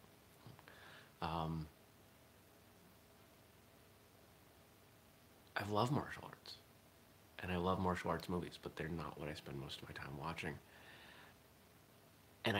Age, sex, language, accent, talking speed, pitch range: 30-49, male, English, American, 110 wpm, 85-110 Hz